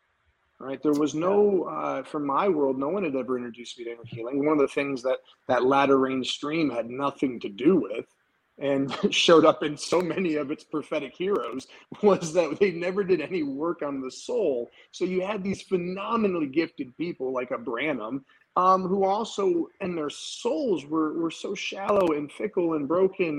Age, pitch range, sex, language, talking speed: 30-49, 135-175 Hz, male, English, 190 wpm